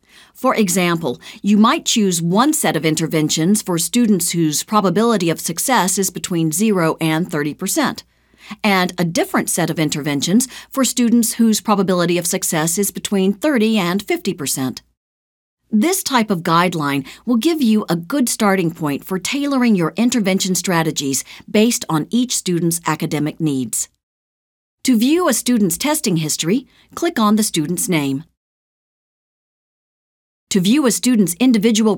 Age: 50-69